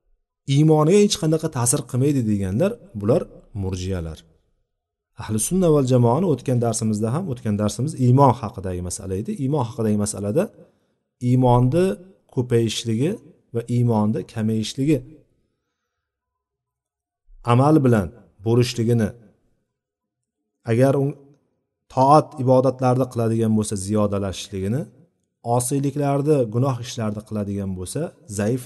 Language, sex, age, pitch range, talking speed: Bulgarian, male, 40-59, 100-135 Hz, 95 wpm